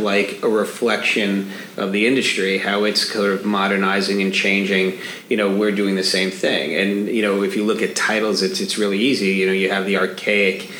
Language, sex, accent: English, male, American